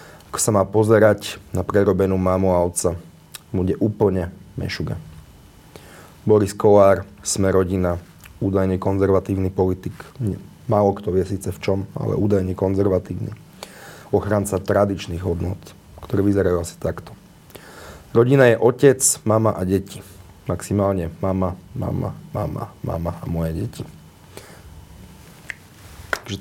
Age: 30-49